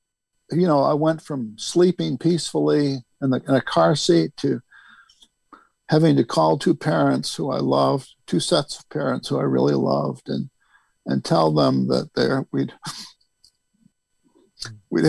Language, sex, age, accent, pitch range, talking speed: English, male, 60-79, American, 120-155 Hz, 150 wpm